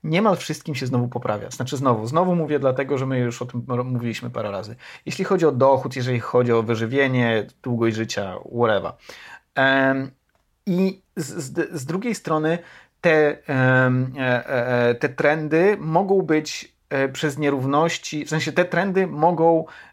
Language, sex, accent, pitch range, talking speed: Polish, male, native, 130-160 Hz, 140 wpm